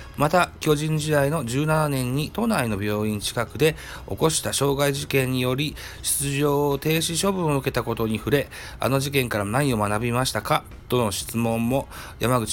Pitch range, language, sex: 110-150 Hz, Japanese, male